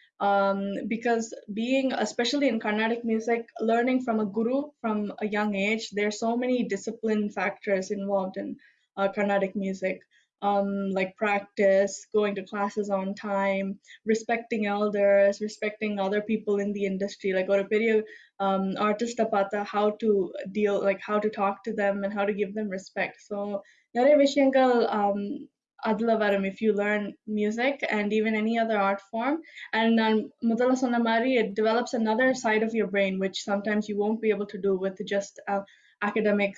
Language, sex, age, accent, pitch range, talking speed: Tamil, female, 10-29, native, 200-225 Hz, 165 wpm